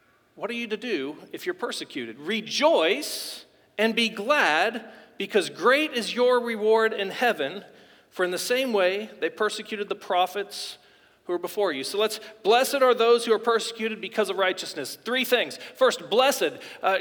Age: 40-59